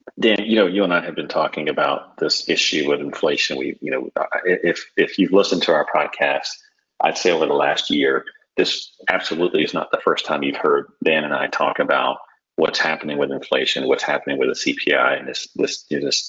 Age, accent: 40-59, American